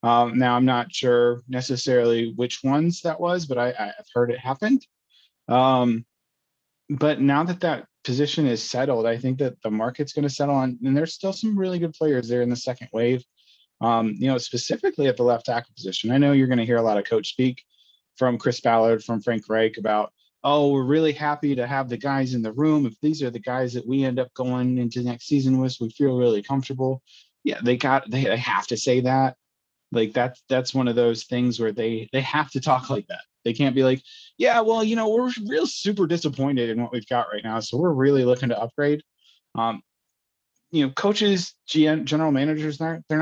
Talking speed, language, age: 215 wpm, English, 30-49